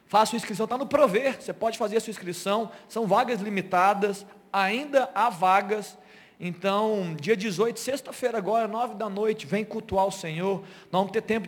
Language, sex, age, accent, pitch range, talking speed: Portuguese, male, 40-59, Brazilian, 200-255 Hz, 180 wpm